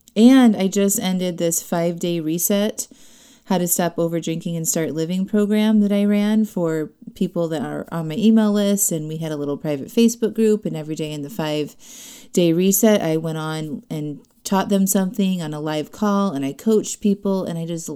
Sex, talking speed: female, 200 wpm